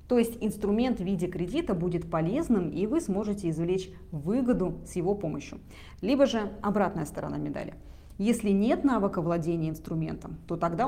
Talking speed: 155 wpm